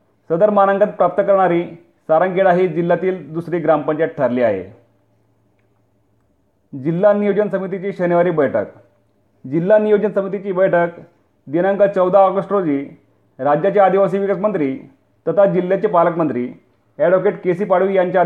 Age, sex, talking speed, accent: 40-59, male, 115 wpm, native